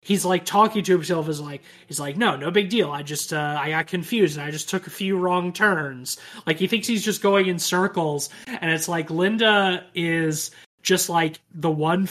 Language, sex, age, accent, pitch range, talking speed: English, male, 20-39, American, 145-180 Hz, 220 wpm